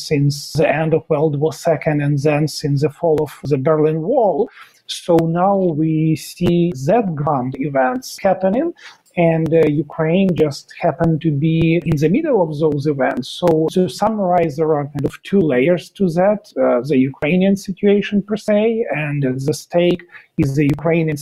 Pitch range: 155-190 Hz